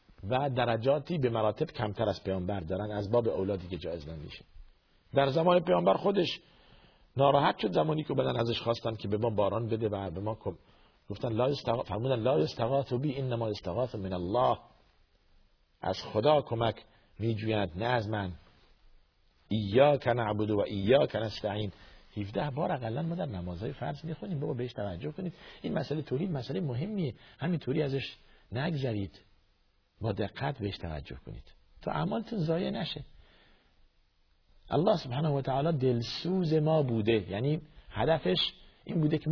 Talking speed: 150 wpm